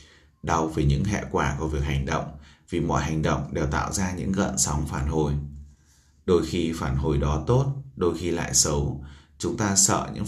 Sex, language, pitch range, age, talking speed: male, Vietnamese, 70-90 Hz, 20-39, 205 wpm